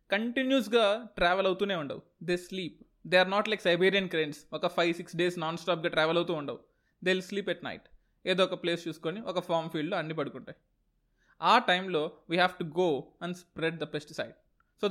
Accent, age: native, 20-39